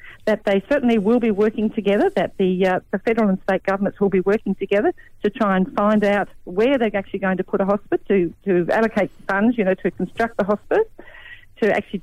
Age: 50-69